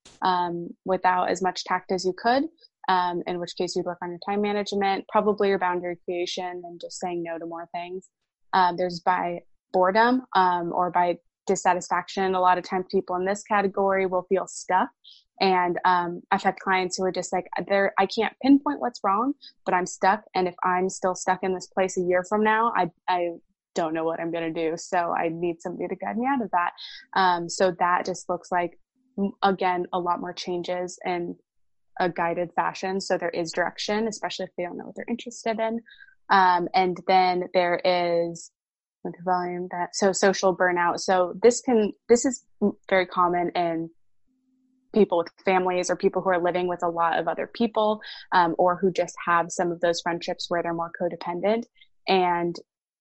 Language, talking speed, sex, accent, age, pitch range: English, 195 wpm, female, American, 20-39, 175-200 Hz